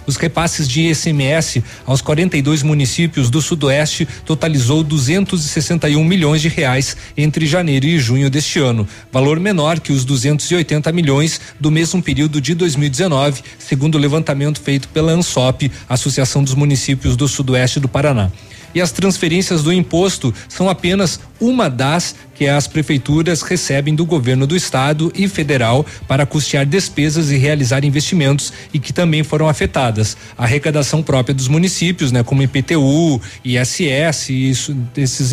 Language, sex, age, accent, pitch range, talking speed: Portuguese, male, 40-59, Brazilian, 135-165 Hz, 145 wpm